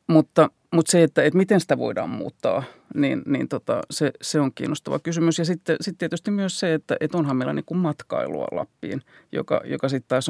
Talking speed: 175 wpm